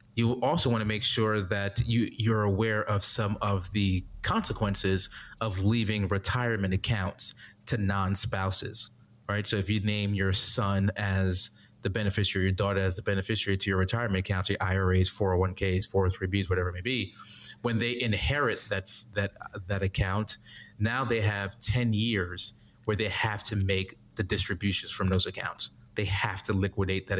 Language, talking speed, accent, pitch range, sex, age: English, 170 wpm, American, 100-110 Hz, male, 30-49